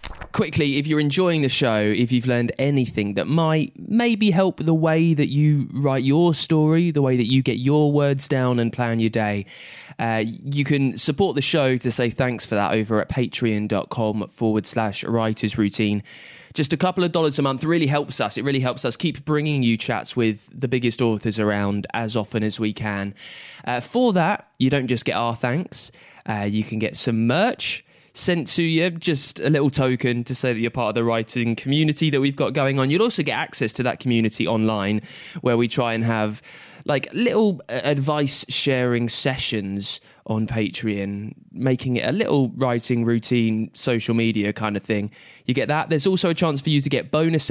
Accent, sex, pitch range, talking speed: British, male, 115-150 Hz, 200 wpm